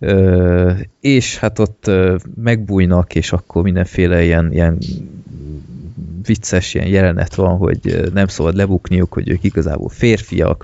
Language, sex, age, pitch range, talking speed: Hungarian, male, 20-39, 90-110 Hz, 135 wpm